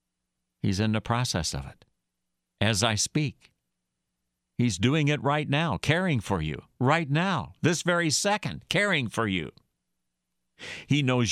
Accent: American